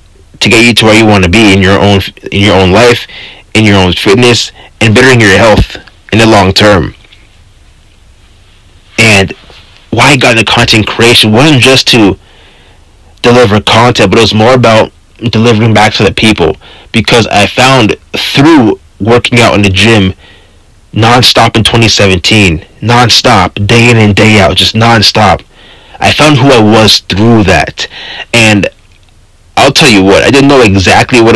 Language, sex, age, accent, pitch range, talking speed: English, male, 30-49, American, 95-115 Hz, 170 wpm